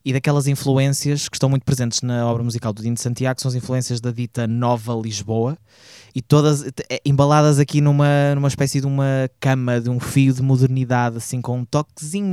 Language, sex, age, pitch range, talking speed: Portuguese, male, 20-39, 120-145 Hz, 195 wpm